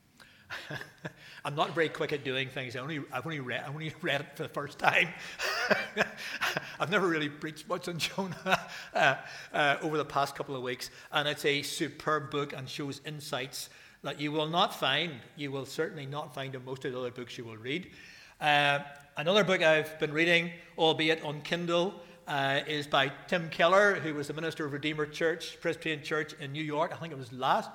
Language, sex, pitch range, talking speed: English, male, 135-170 Hz, 200 wpm